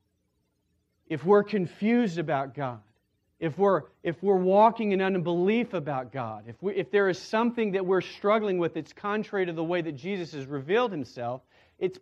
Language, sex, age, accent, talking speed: English, male, 40-59, American, 165 wpm